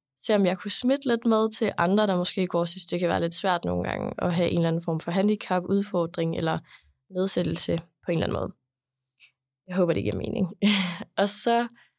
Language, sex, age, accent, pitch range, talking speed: Danish, female, 20-39, native, 170-210 Hz, 220 wpm